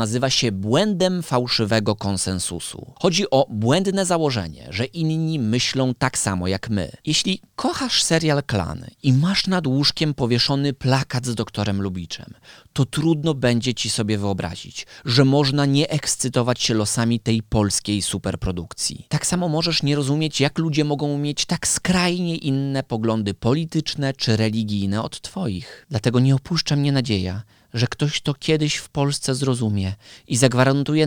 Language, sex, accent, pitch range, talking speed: Polish, male, native, 115-155 Hz, 145 wpm